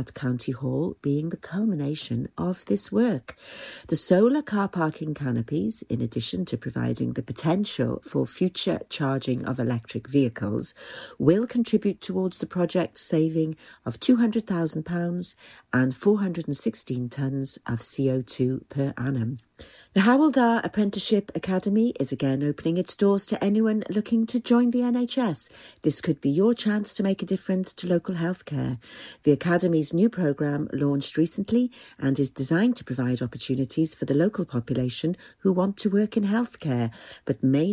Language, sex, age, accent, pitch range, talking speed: English, female, 50-69, British, 135-200 Hz, 150 wpm